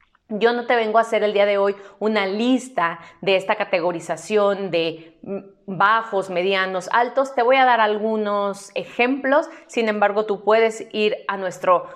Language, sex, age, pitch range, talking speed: Spanish, female, 30-49, 180-225 Hz, 160 wpm